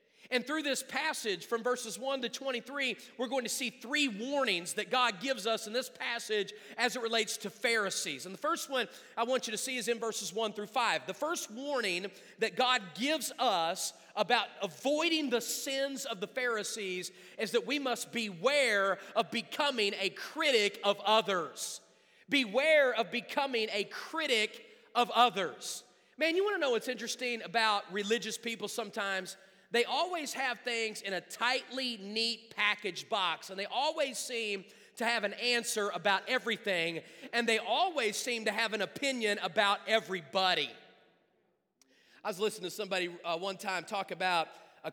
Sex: male